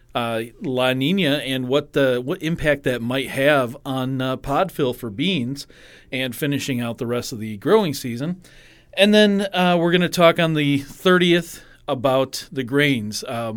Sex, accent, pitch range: male, American, 115-145 Hz